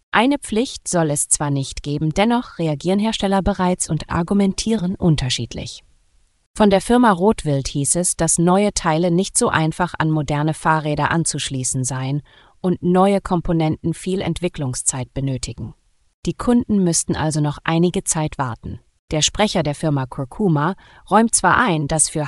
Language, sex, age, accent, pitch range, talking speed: German, female, 30-49, German, 145-185 Hz, 150 wpm